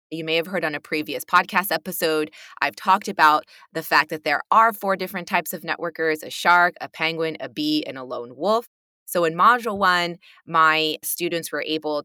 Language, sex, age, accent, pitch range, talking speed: English, female, 20-39, American, 155-205 Hz, 200 wpm